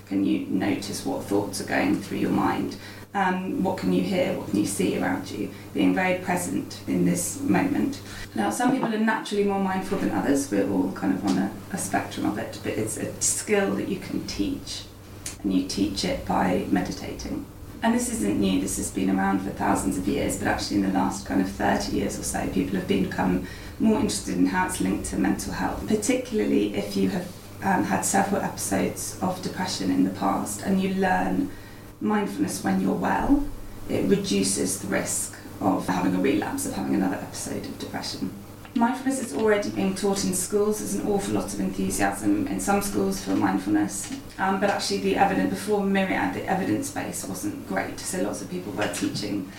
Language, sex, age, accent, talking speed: English, female, 20-39, British, 200 wpm